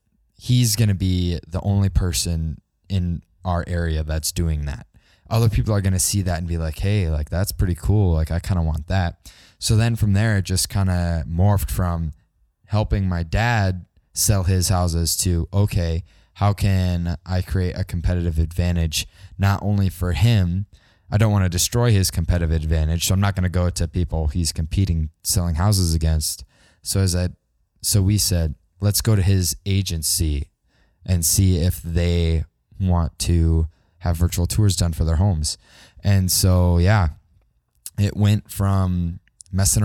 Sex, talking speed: male, 175 wpm